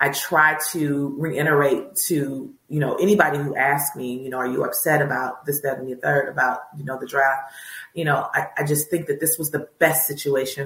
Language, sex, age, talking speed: English, female, 30-49, 220 wpm